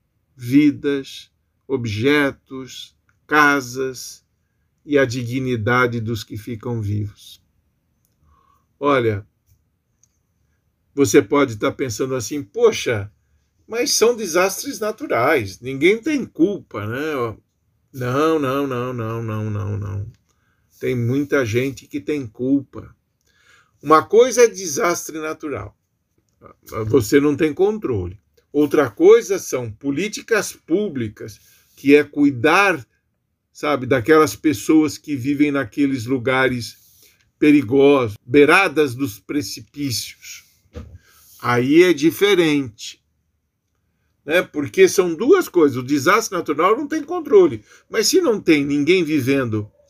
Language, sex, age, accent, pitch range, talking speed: Portuguese, male, 50-69, Brazilian, 110-155 Hz, 100 wpm